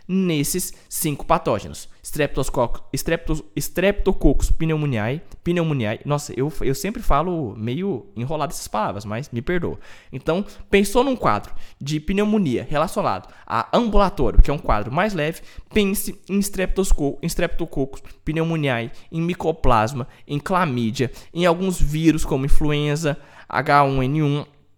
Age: 20-39